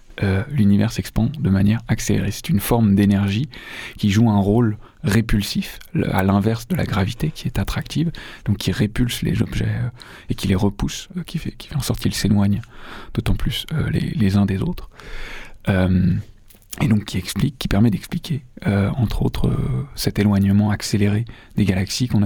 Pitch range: 100-120 Hz